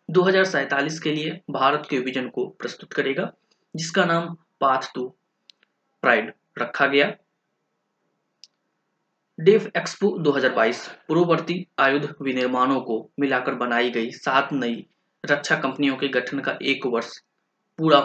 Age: 30-49